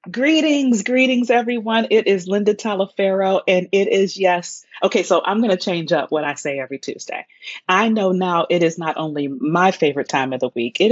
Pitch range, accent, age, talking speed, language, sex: 155-205 Hz, American, 30-49, 205 wpm, English, female